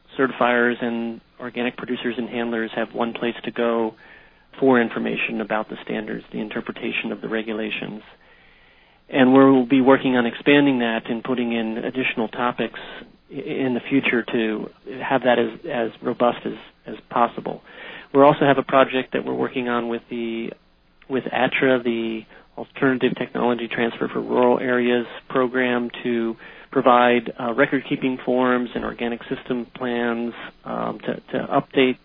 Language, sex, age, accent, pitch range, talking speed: English, male, 40-59, American, 115-130 Hz, 150 wpm